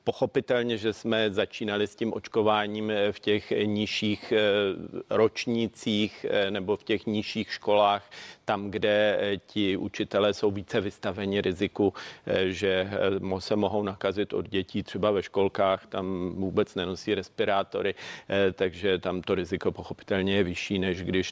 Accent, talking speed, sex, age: native, 130 wpm, male, 40-59